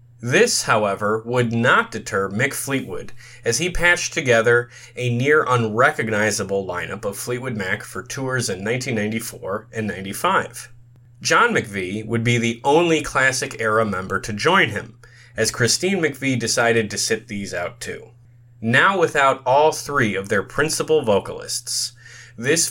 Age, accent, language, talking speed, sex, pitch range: 30-49, American, English, 140 wpm, male, 110-130 Hz